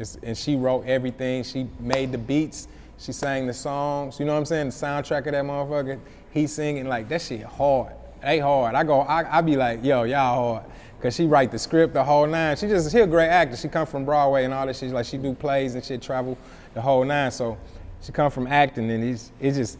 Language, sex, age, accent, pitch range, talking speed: English, male, 20-39, American, 115-140 Hz, 240 wpm